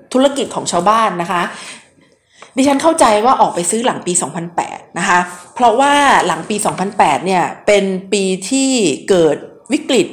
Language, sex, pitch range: Thai, female, 190-245 Hz